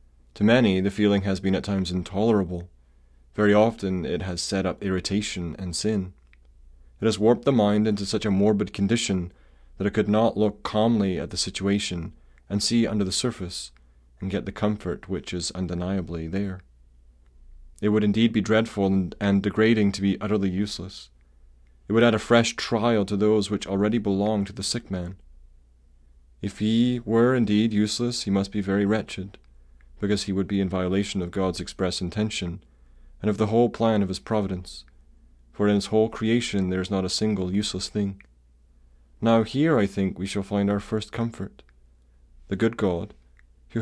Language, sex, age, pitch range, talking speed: English, male, 30-49, 65-105 Hz, 180 wpm